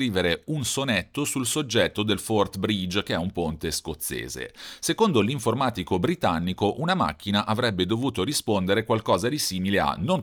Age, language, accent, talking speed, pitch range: 40-59, Italian, native, 145 wpm, 90-120 Hz